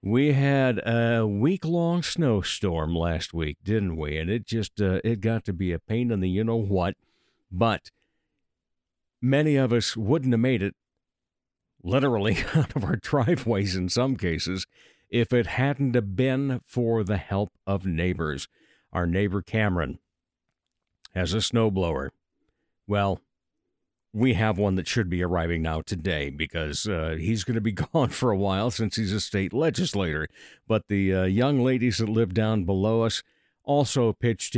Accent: American